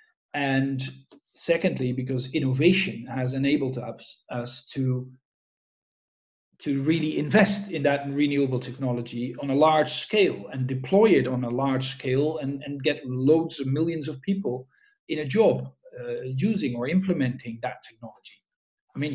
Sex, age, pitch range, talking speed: male, 50-69, 130-160 Hz, 140 wpm